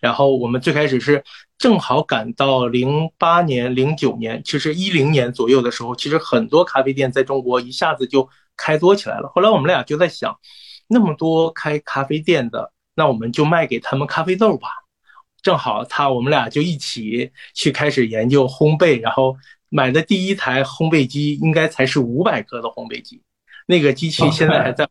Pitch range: 130-170 Hz